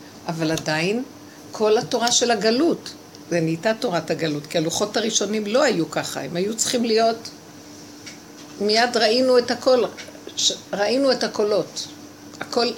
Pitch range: 175-235 Hz